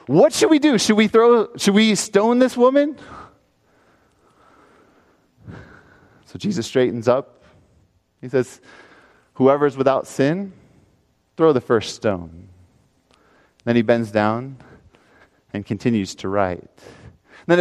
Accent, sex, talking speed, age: American, male, 110 wpm, 30-49